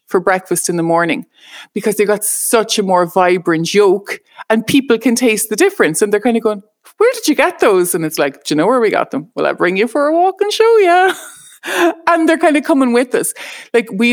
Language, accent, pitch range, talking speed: English, Irish, 180-245 Hz, 245 wpm